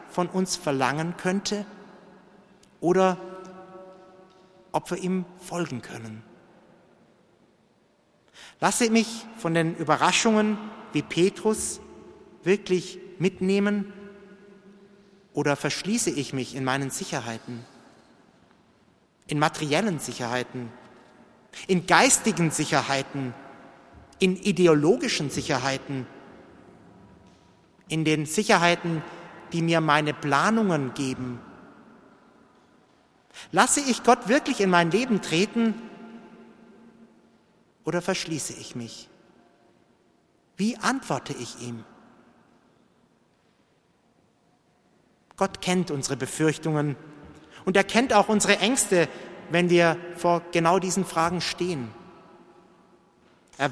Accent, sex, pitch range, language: German, male, 145-200 Hz, English